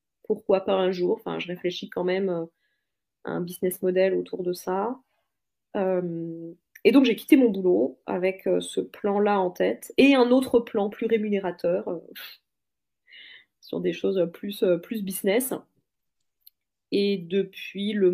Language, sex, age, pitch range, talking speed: French, female, 30-49, 175-215 Hz, 135 wpm